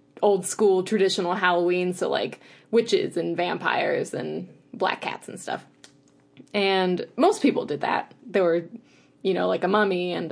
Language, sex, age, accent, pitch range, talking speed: English, female, 20-39, American, 175-215 Hz, 150 wpm